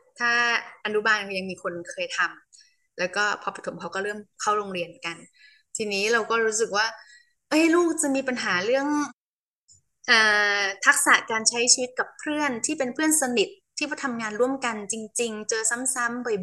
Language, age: Thai, 20-39